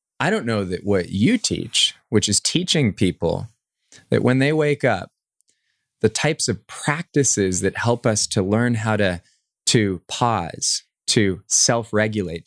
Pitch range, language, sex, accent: 95-120 Hz, English, male, American